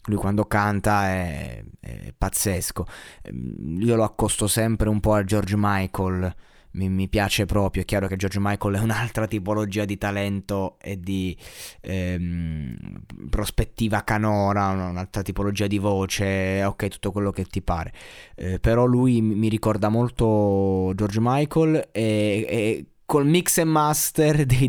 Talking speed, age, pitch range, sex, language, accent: 145 wpm, 20-39, 100-135 Hz, male, Italian, native